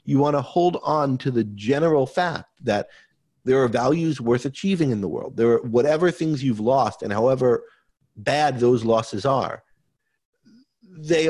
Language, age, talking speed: English, 50-69, 165 wpm